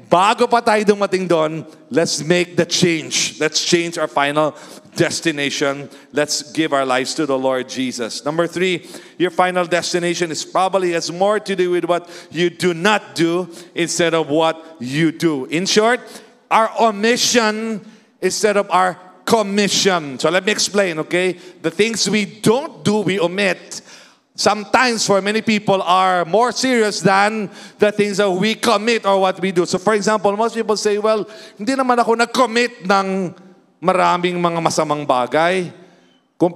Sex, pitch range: male, 170-210 Hz